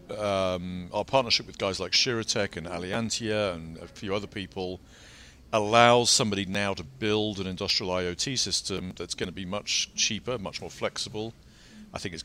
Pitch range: 80-100 Hz